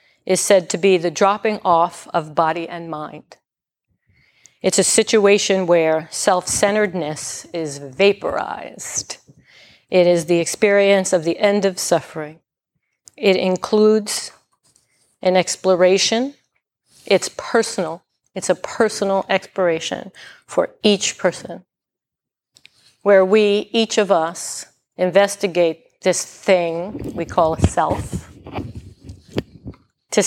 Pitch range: 175-210 Hz